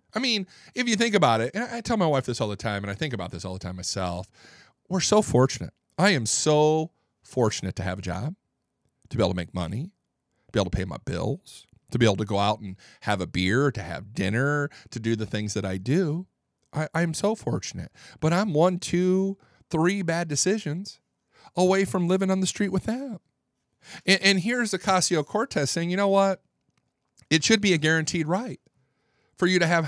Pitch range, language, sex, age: 110-185 Hz, English, male, 40-59